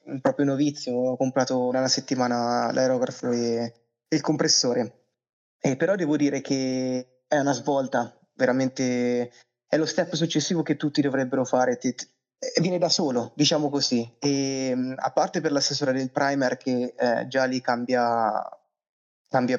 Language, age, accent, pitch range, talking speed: Italian, 20-39, native, 125-150 Hz, 140 wpm